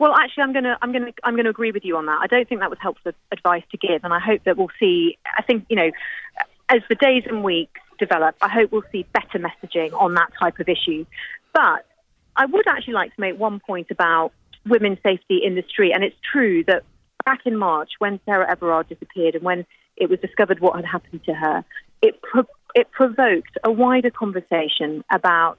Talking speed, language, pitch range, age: 215 wpm, English, 175-245 Hz, 40-59